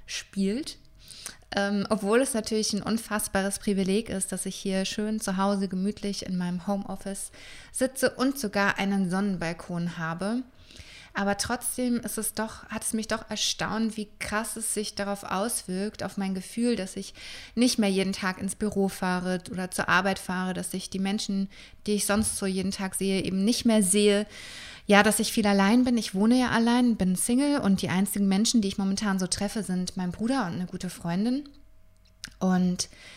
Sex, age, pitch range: female, 20-39, 185-215 Hz